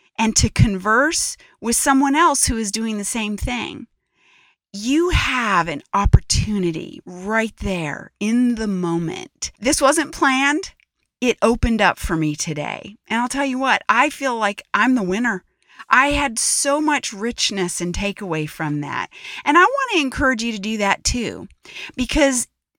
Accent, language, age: American, English, 40-59